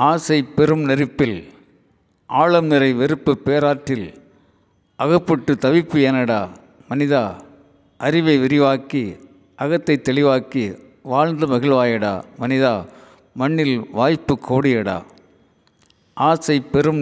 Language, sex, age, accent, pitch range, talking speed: Tamil, male, 50-69, native, 120-145 Hz, 80 wpm